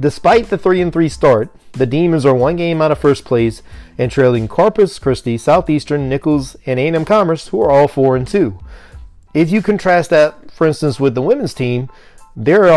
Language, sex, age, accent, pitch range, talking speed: English, male, 40-59, American, 125-155 Hz, 195 wpm